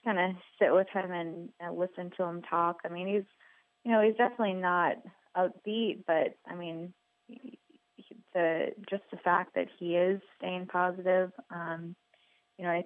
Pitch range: 170-190 Hz